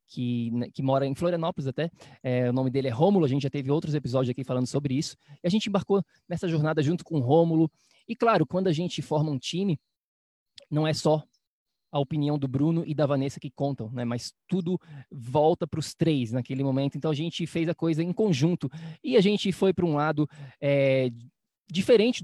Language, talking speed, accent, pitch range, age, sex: Portuguese, 210 wpm, Brazilian, 140-180 Hz, 20-39, male